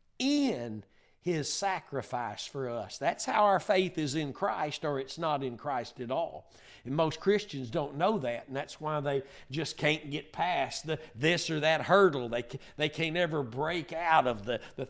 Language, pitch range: English, 130-170 Hz